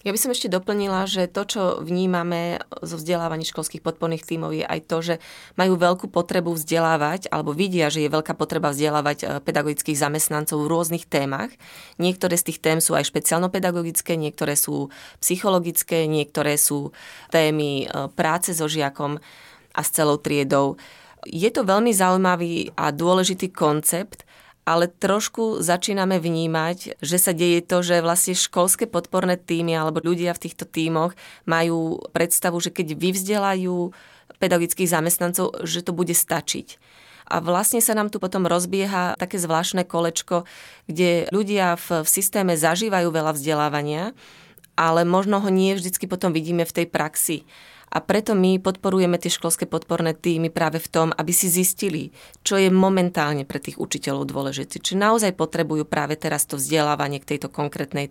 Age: 30-49